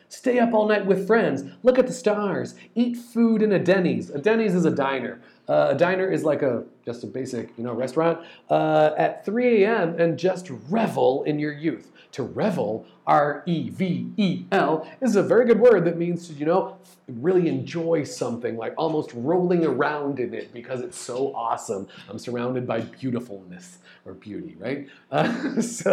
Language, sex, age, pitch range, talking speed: English, male, 40-59, 150-190 Hz, 180 wpm